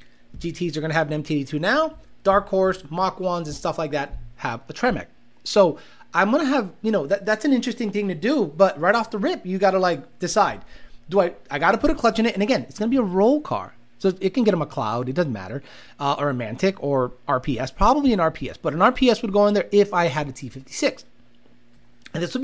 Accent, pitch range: American, 150-220 Hz